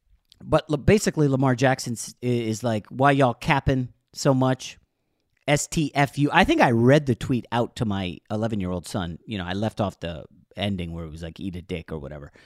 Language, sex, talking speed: English, male, 190 wpm